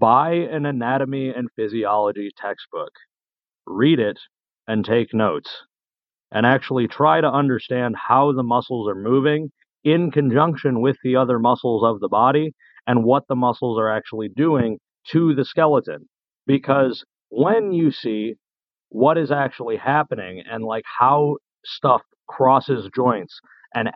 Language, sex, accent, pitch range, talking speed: English, male, American, 115-145 Hz, 140 wpm